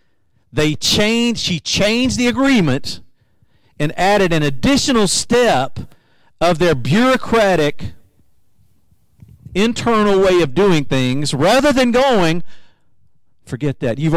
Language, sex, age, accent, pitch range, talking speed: English, male, 50-69, American, 120-175 Hz, 105 wpm